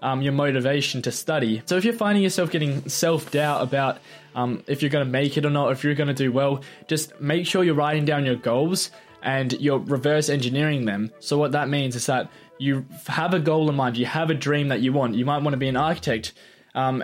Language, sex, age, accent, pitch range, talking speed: English, male, 20-39, Australian, 130-155 Hz, 240 wpm